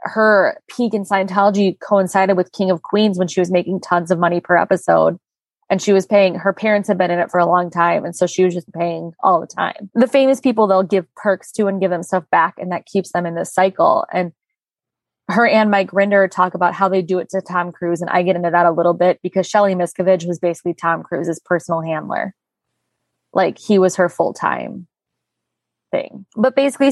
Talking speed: 220 wpm